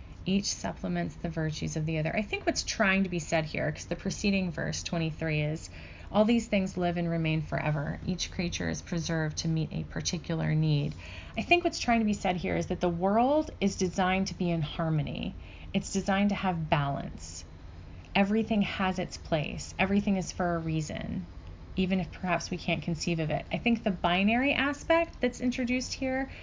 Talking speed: 195 wpm